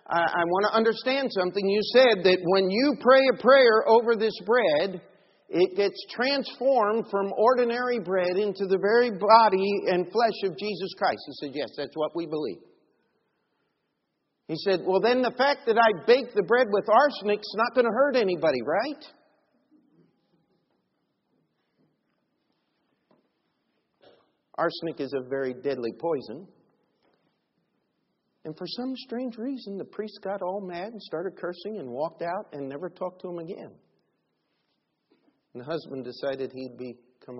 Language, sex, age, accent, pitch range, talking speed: English, male, 50-69, American, 150-225 Hz, 150 wpm